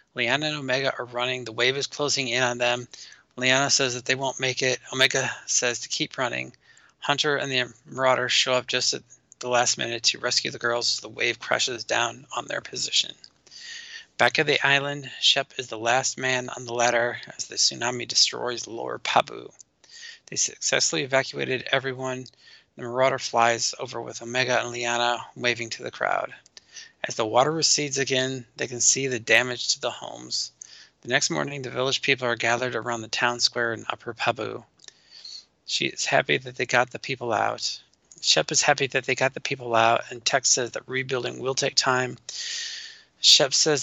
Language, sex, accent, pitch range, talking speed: English, male, American, 120-135 Hz, 190 wpm